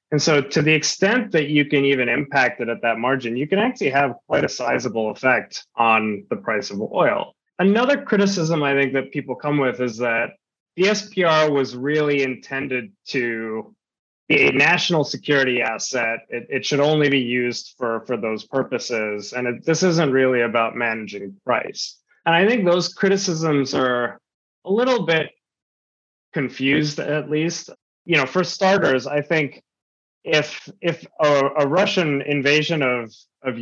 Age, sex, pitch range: 20-39, male, 125-160 Hz